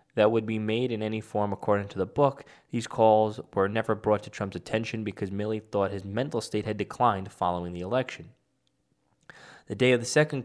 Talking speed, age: 200 wpm, 10-29